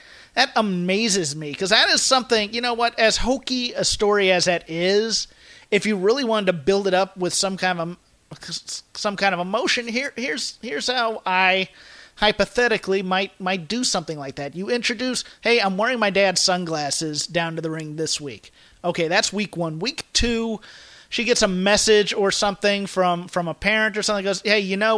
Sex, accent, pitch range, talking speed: male, American, 170-215 Hz, 195 wpm